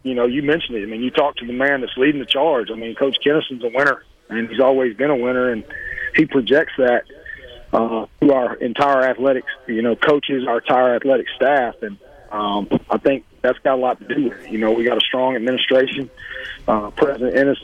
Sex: male